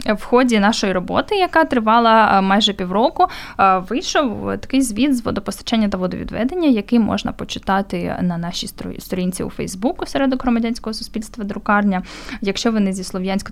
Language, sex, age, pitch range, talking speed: Ukrainian, female, 10-29, 190-240 Hz, 140 wpm